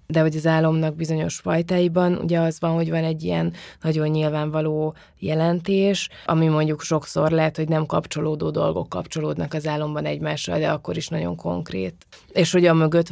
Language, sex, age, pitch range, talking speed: Hungarian, female, 20-39, 155-175 Hz, 170 wpm